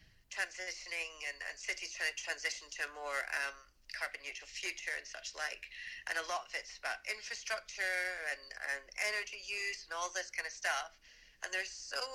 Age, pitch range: 40-59, 155-215 Hz